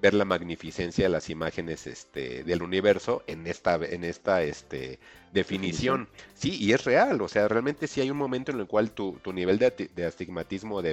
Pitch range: 90-125 Hz